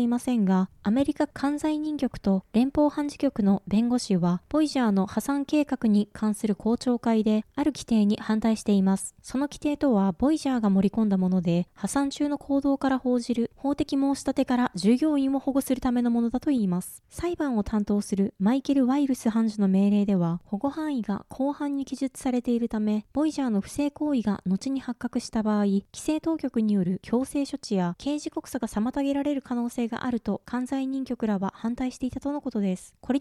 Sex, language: female, Japanese